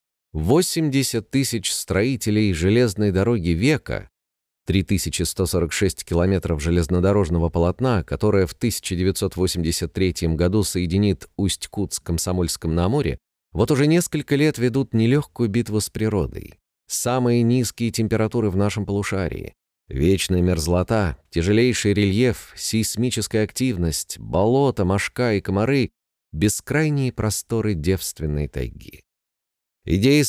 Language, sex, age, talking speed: Russian, male, 30-49, 95 wpm